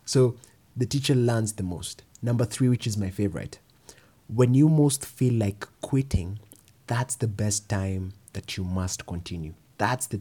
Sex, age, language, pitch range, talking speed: male, 20-39, English, 100-125 Hz, 165 wpm